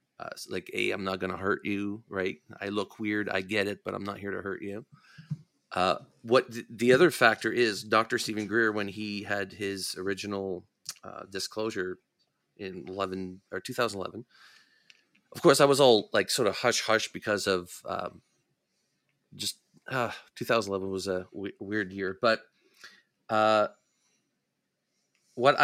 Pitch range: 100-115 Hz